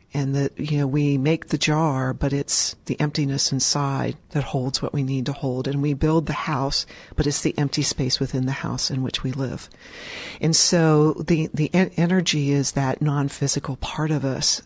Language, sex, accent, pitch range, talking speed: English, female, American, 130-150 Hz, 200 wpm